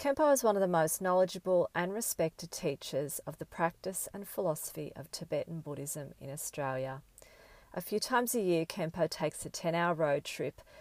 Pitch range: 145-175 Hz